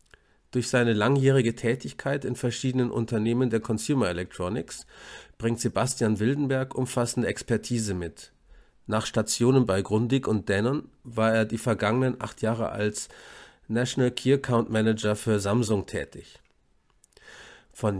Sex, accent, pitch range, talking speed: male, German, 105-130 Hz, 125 wpm